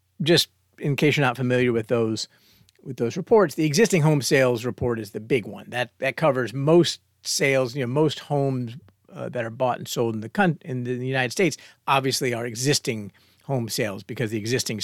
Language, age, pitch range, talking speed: English, 40-59, 115-150 Hz, 200 wpm